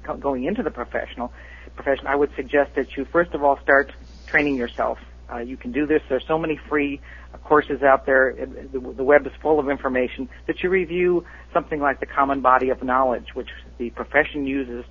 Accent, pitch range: American, 120-145 Hz